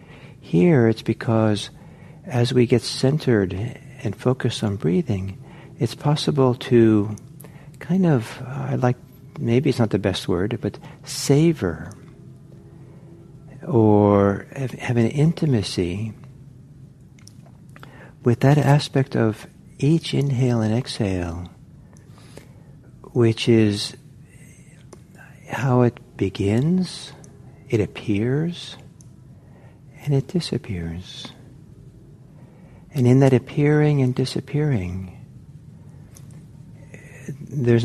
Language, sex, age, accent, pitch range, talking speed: English, male, 60-79, American, 110-145 Hz, 90 wpm